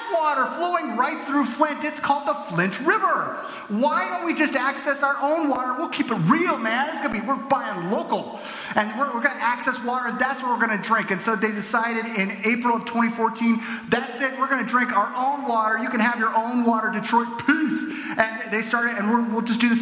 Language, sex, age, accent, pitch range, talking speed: English, male, 30-49, American, 185-255 Hz, 225 wpm